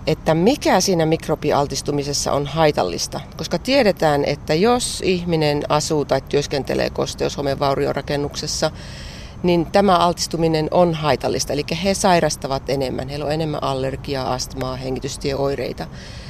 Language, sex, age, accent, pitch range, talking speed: Finnish, female, 30-49, native, 145-180 Hz, 115 wpm